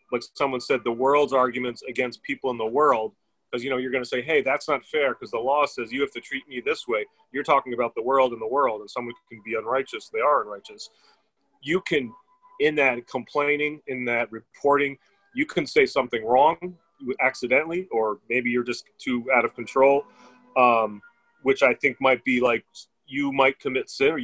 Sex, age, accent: male, 30-49, American